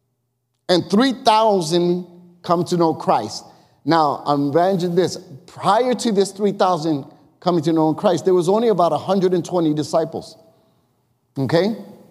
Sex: male